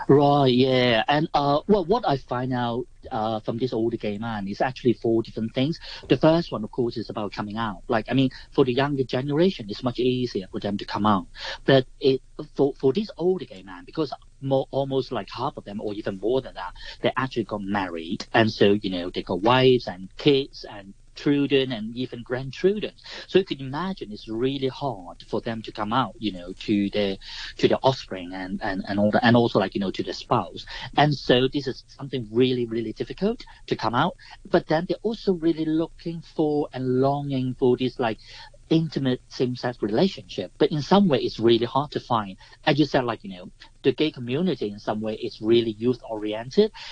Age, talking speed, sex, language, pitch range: 40-59, 205 wpm, male, English, 110-140 Hz